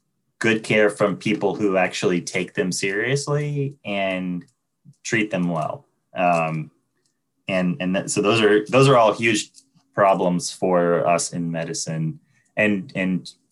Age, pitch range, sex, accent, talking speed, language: 20-39, 85-100 Hz, male, American, 135 wpm, English